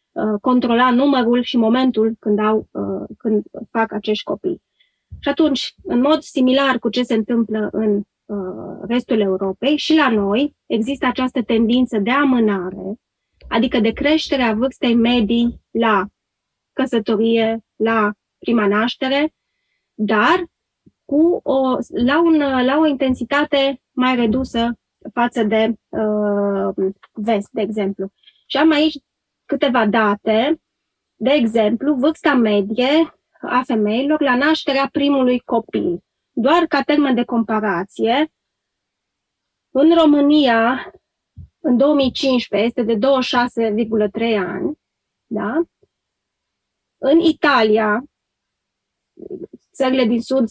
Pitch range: 220-275 Hz